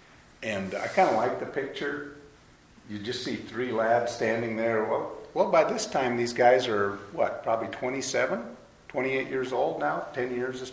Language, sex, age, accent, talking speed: English, male, 50-69, American, 180 wpm